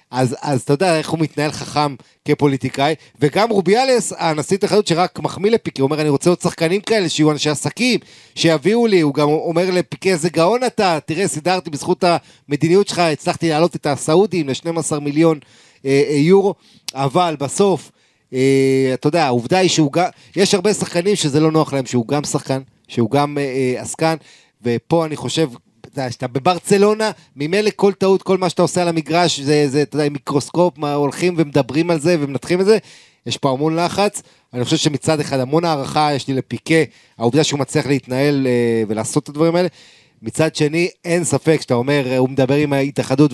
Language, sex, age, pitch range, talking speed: Hebrew, male, 30-49, 135-175 Hz, 180 wpm